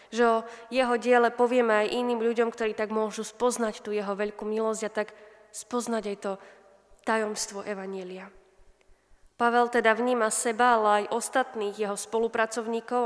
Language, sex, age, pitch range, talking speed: Slovak, female, 20-39, 210-235 Hz, 140 wpm